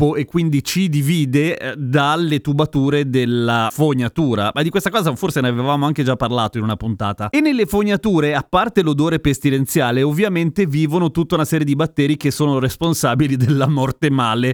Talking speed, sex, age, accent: 175 wpm, male, 30-49, native